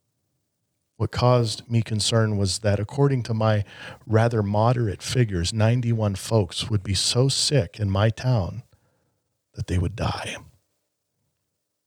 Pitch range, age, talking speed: 100-120 Hz, 40-59, 125 wpm